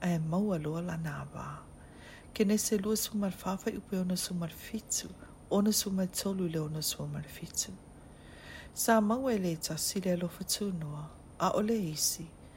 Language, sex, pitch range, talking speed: English, female, 165-210 Hz, 95 wpm